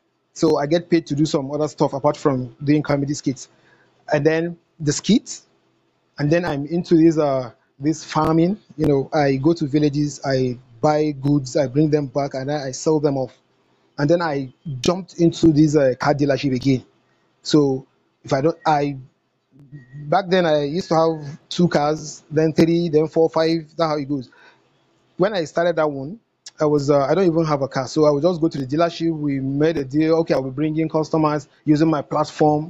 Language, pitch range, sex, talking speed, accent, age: English, 145-165 Hz, male, 205 wpm, Nigerian, 30-49